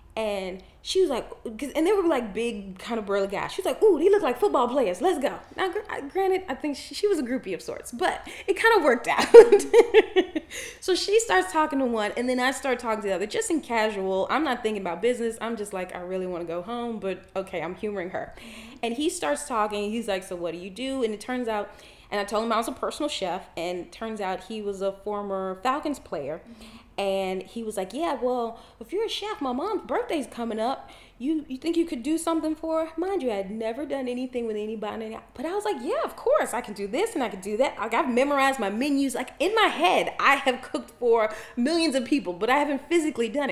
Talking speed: 250 wpm